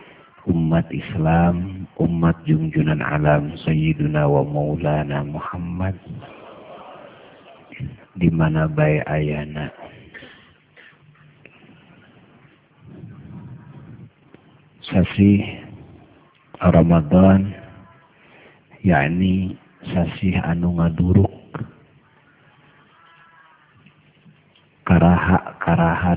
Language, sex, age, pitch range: Indonesian, male, 50-69, 80-95 Hz